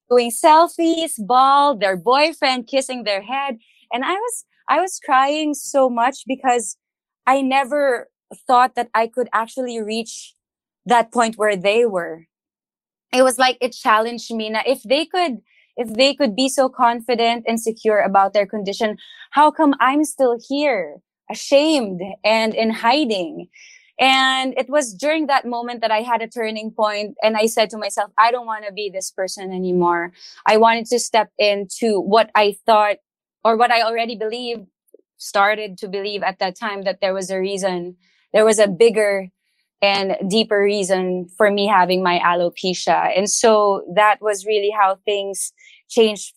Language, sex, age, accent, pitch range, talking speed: English, female, 20-39, Filipino, 205-260 Hz, 165 wpm